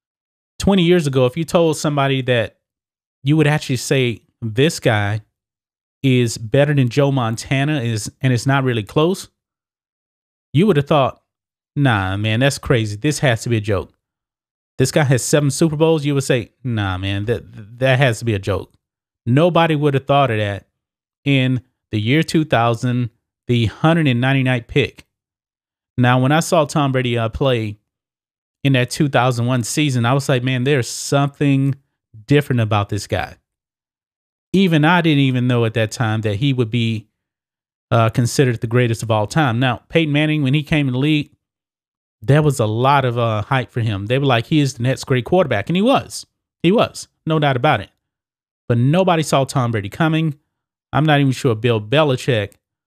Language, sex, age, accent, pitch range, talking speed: English, male, 30-49, American, 115-145 Hz, 180 wpm